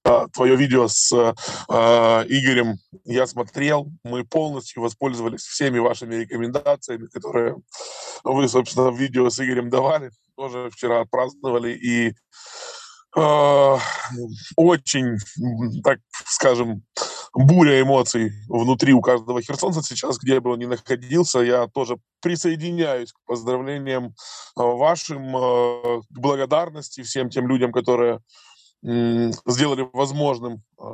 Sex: male